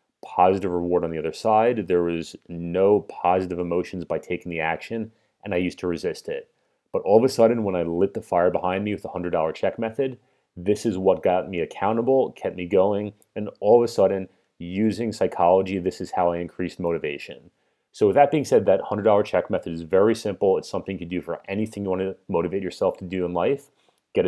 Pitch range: 90-115 Hz